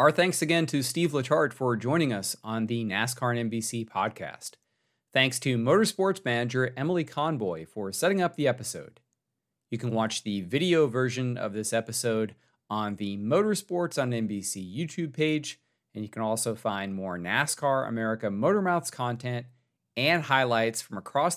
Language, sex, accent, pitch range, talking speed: English, male, American, 105-150 Hz, 155 wpm